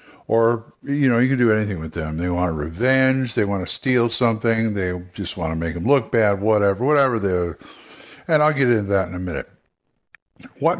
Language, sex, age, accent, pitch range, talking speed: English, male, 60-79, American, 105-135 Hz, 205 wpm